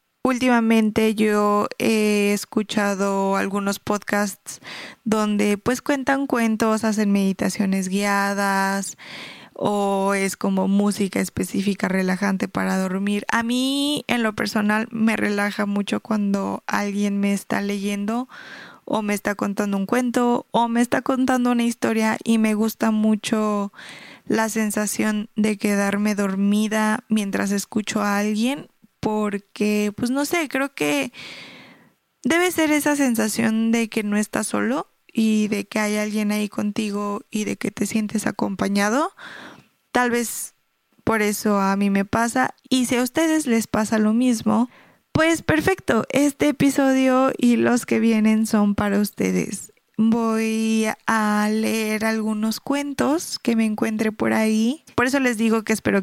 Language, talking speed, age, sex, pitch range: Spanish, 140 wpm, 20-39, female, 205-240 Hz